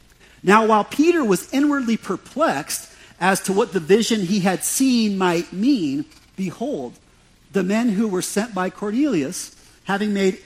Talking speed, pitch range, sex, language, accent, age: 150 wpm, 155-210 Hz, male, English, American, 40-59